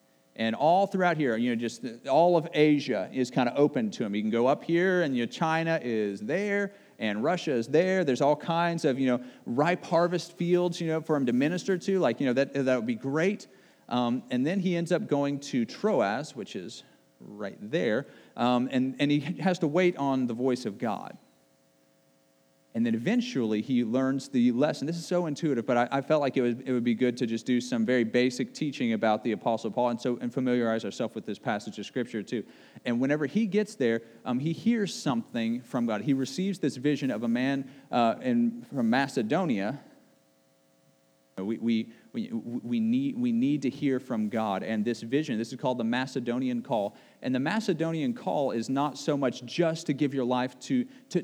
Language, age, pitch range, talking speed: English, 40-59, 120-175 Hz, 210 wpm